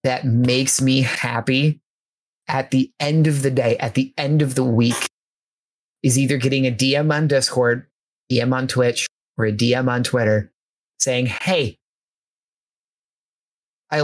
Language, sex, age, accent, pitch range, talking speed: English, male, 20-39, American, 125-140 Hz, 145 wpm